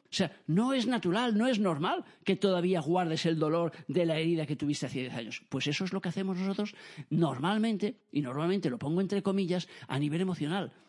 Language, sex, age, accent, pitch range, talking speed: Spanish, male, 40-59, Spanish, 150-200 Hz, 210 wpm